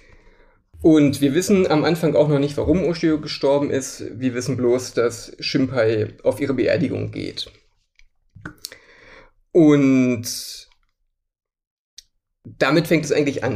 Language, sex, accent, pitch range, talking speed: German, male, German, 120-150 Hz, 120 wpm